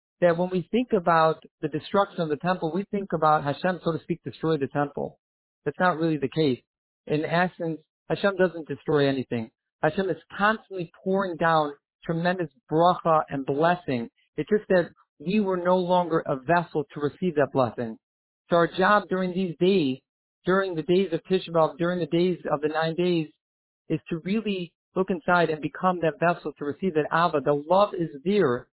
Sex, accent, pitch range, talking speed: male, American, 150-185 Hz, 185 wpm